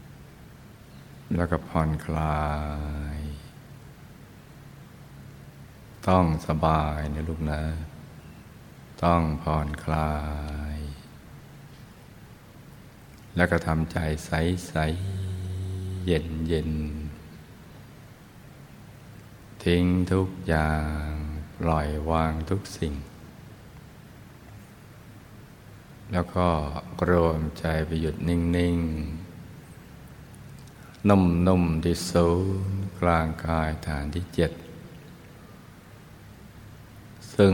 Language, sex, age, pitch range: Thai, male, 60-79, 80-90 Hz